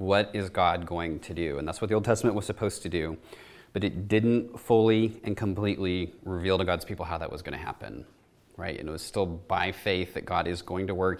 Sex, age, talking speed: male, 30-49, 240 wpm